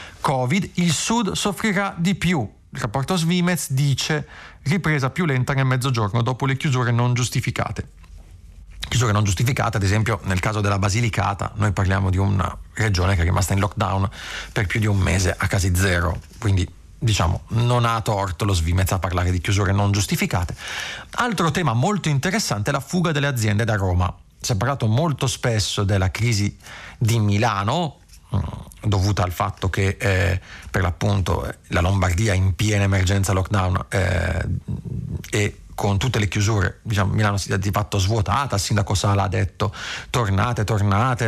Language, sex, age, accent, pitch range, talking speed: Italian, male, 30-49, native, 100-125 Hz, 165 wpm